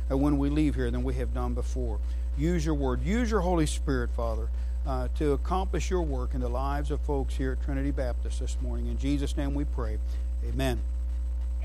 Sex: male